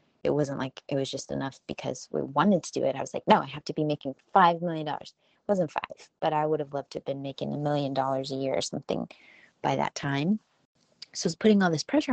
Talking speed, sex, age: 260 wpm, female, 20-39